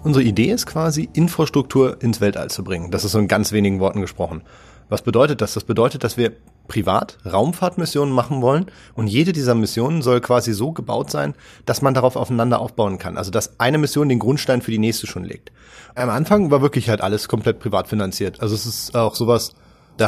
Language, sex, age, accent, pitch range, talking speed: German, male, 30-49, German, 110-130 Hz, 205 wpm